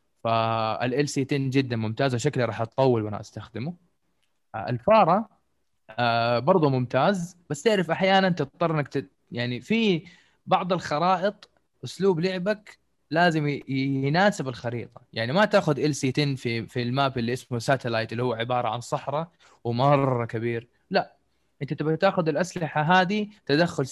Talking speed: 125 wpm